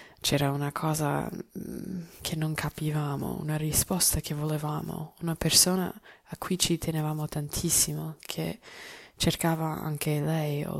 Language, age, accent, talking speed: Italian, 20-39, native, 120 wpm